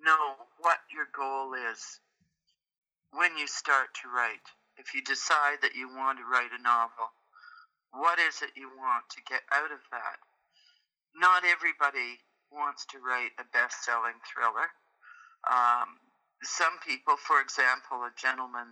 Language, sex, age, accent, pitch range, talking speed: English, male, 50-69, American, 130-180 Hz, 145 wpm